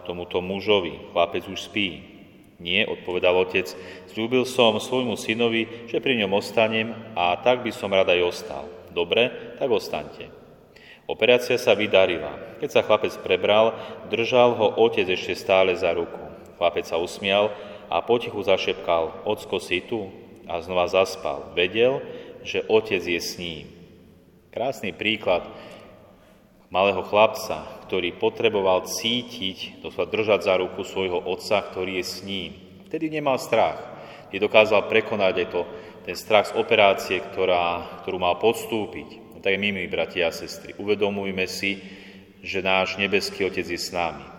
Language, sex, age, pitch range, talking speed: Slovak, male, 30-49, 90-110 Hz, 145 wpm